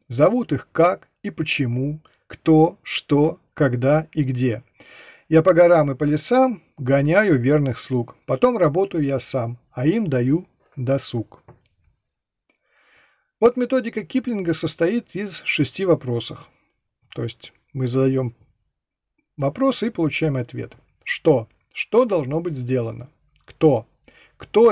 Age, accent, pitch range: 40-59, native, 130-185 Hz